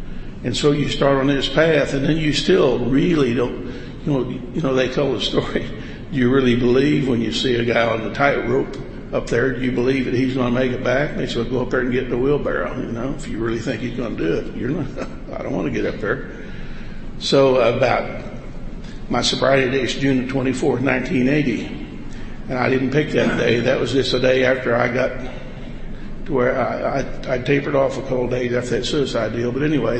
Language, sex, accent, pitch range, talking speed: English, male, American, 125-140 Hz, 230 wpm